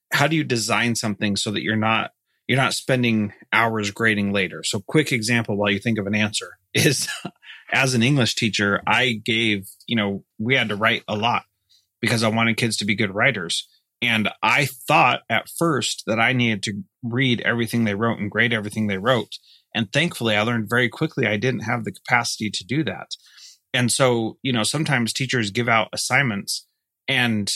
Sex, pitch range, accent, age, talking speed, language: male, 105-130 Hz, American, 30-49, 195 wpm, English